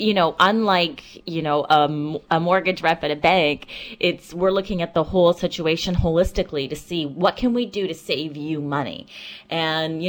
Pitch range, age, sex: 155-190 Hz, 30-49, female